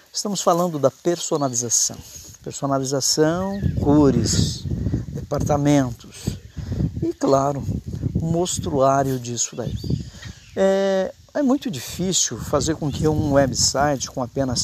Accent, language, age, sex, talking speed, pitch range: Brazilian, Portuguese, 50-69, male, 100 wpm, 125-160 Hz